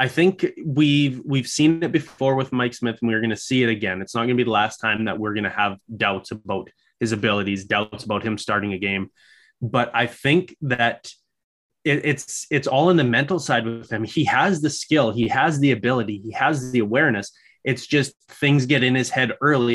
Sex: male